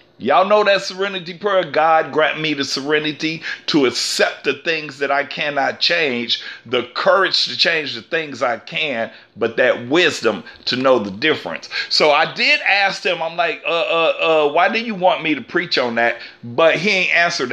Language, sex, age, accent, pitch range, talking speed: English, male, 40-59, American, 150-210 Hz, 190 wpm